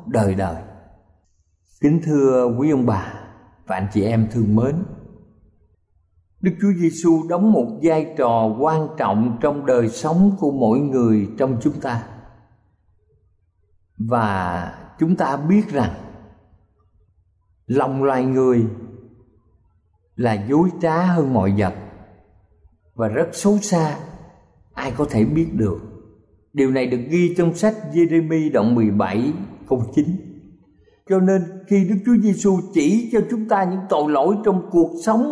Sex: male